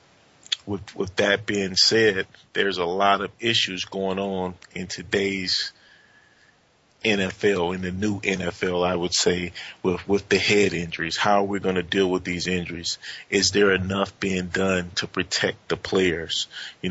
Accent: American